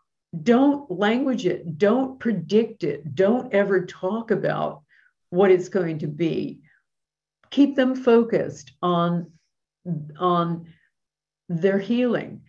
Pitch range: 180-225 Hz